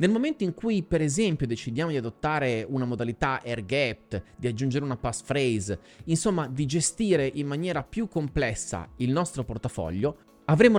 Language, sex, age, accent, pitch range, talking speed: Italian, male, 30-49, native, 125-190 Hz, 155 wpm